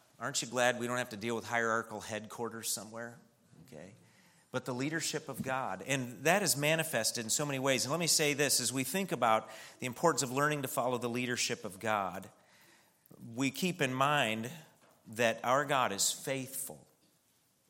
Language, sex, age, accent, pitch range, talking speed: English, male, 40-59, American, 115-145 Hz, 185 wpm